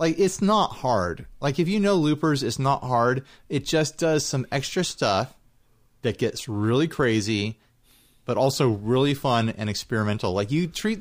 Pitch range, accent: 115-150 Hz, American